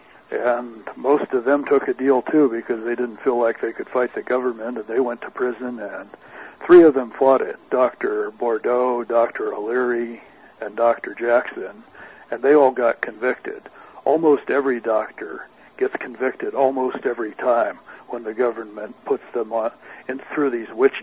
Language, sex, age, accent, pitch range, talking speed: English, male, 60-79, American, 120-165 Hz, 165 wpm